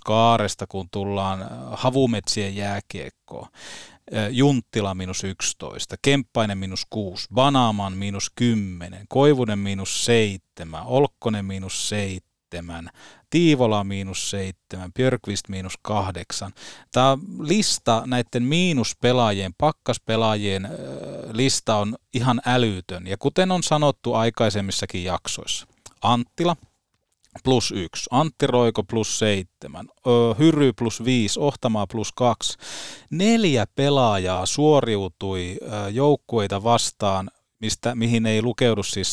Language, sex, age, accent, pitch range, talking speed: Finnish, male, 30-49, native, 100-130 Hz, 100 wpm